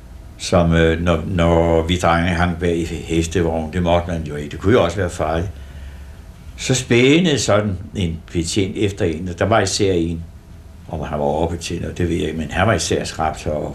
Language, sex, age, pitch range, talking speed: Danish, male, 60-79, 80-90 Hz, 205 wpm